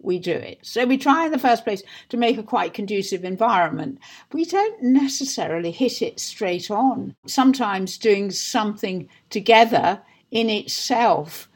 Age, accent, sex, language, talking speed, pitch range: 60-79, British, female, English, 150 wpm, 190-245 Hz